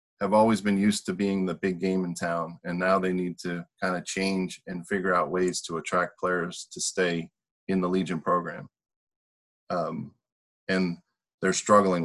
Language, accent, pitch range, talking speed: English, American, 90-105 Hz, 180 wpm